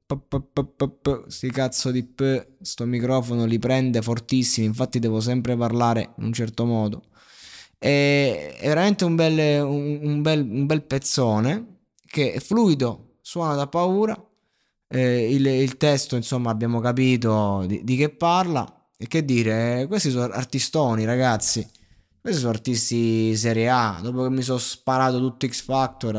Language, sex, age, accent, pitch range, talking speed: Italian, male, 20-39, native, 115-135 Hz, 135 wpm